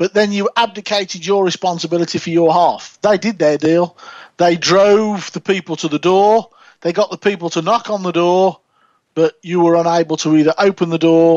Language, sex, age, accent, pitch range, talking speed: English, male, 40-59, British, 170-215 Hz, 200 wpm